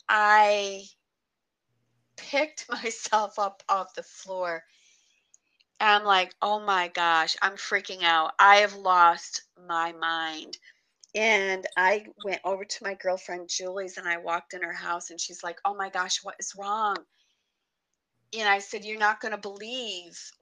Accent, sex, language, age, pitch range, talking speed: American, female, English, 30-49, 190-300 Hz, 155 wpm